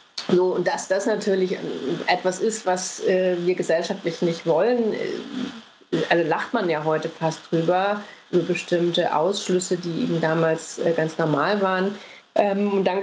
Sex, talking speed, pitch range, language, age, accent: female, 140 wpm, 170-205 Hz, German, 30-49, German